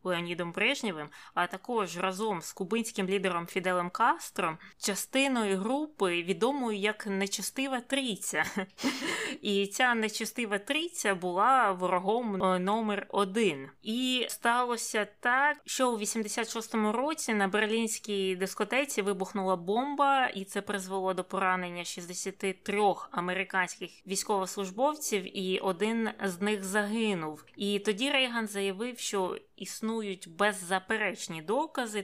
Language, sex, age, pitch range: Ukrainian, female, 20-39, 190-230 Hz